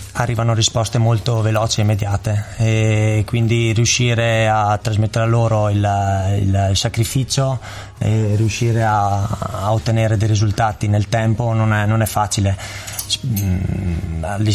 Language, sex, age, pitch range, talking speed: Italian, male, 20-39, 105-115 Hz, 130 wpm